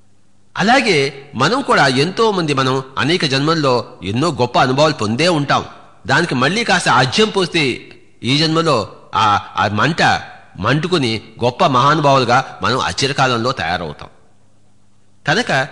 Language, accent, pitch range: English, Indian, 120-180 Hz